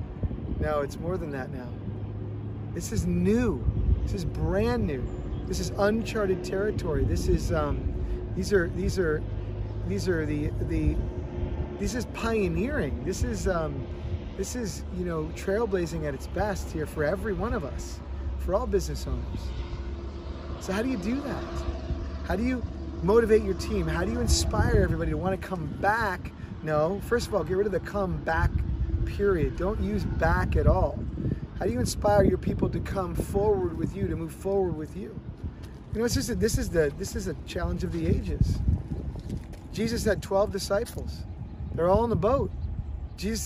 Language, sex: English, male